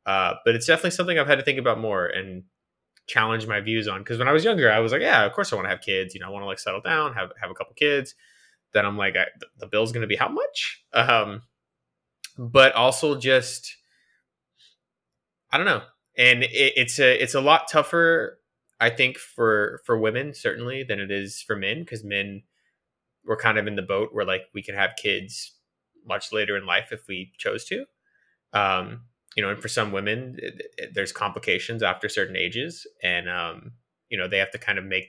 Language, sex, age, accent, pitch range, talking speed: English, male, 20-39, American, 100-135 Hz, 215 wpm